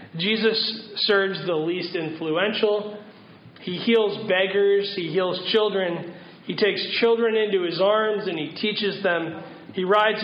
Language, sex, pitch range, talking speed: English, male, 185-230 Hz, 135 wpm